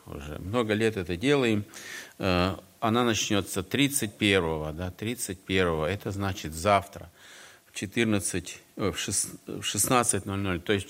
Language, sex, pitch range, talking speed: Russian, male, 95-125 Hz, 105 wpm